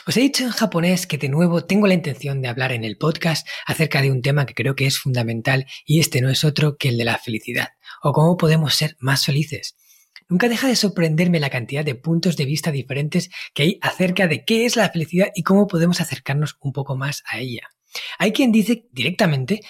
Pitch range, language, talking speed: 140-185 Hz, Spanish, 220 wpm